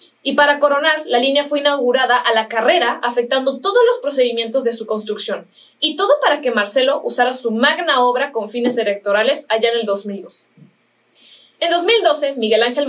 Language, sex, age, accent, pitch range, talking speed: Spanish, female, 20-39, Mexican, 230-300 Hz, 170 wpm